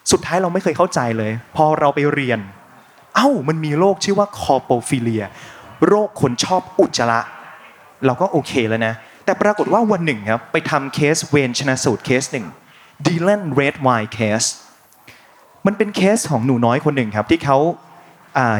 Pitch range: 125-175 Hz